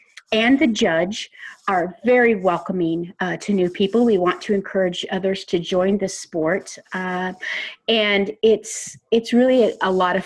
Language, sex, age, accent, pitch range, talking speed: English, female, 30-49, American, 180-230 Hz, 160 wpm